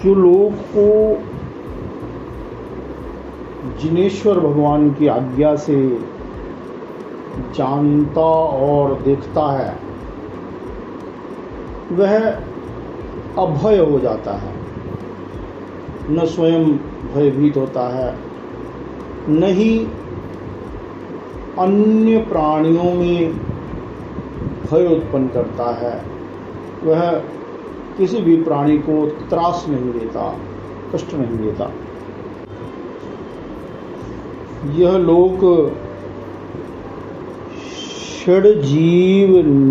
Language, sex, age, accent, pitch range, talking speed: Hindi, male, 50-69, native, 130-170 Hz, 65 wpm